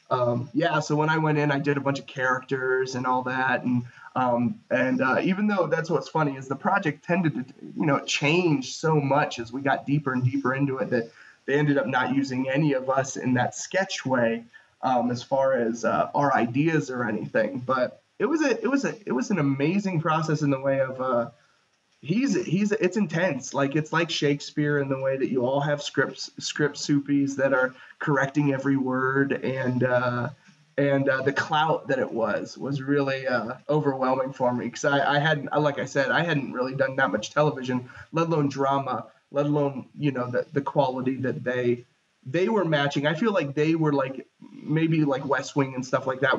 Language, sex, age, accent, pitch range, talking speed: English, male, 20-39, American, 130-150 Hz, 210 wpm